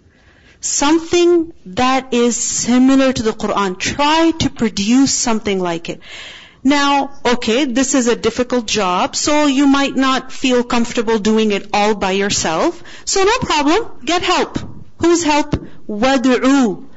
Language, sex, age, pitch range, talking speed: English, female, 40-59, 230-300 Hz, 140 wpm